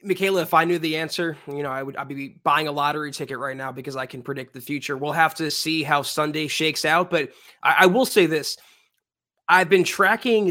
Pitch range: 150-195 Hz